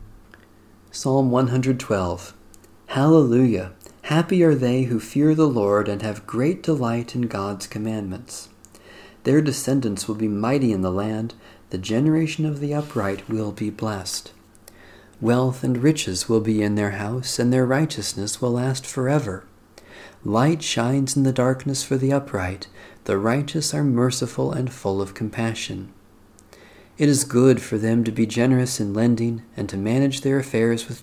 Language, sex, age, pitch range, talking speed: English, male, 40-59, 105-135 Hz, 155 wpm